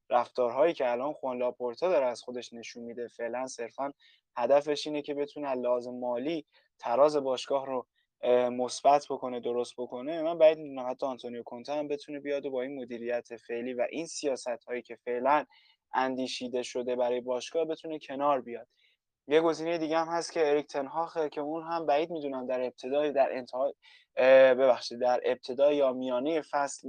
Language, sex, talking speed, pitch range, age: Persian, male, 165 wpm, 125-150 Hz, 20-39